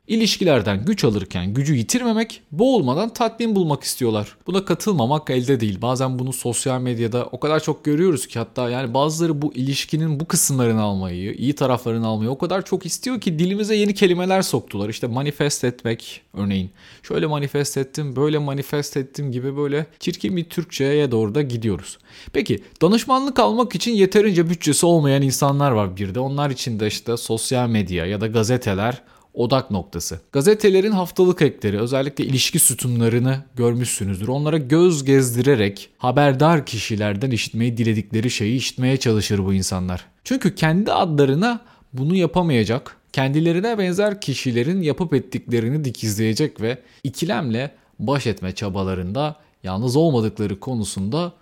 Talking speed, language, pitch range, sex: 140 wpm, Turkish, 115-170 Hz, male